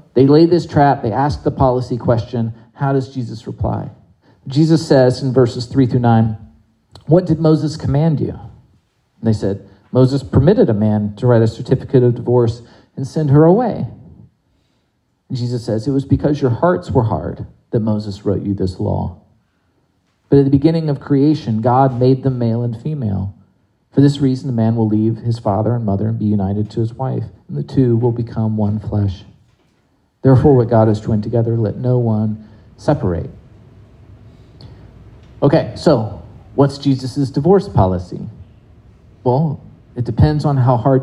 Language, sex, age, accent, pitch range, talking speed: English, male, 40-59, American, 110-140 Hz, 170 wpm